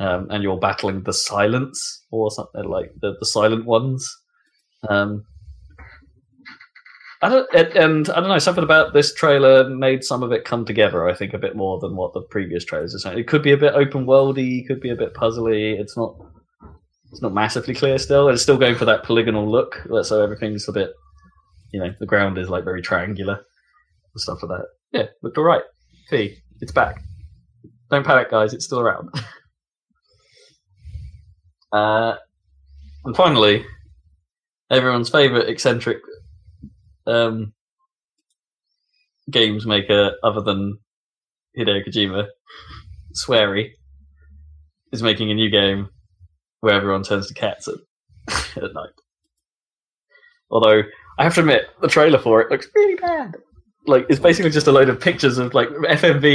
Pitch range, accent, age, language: 100-140 Hz, British, 20-39, English